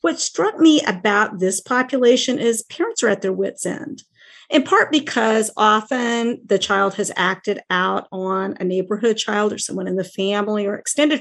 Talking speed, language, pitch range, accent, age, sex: 175 wpm, English, 210-275 Hz, American, 50-69, female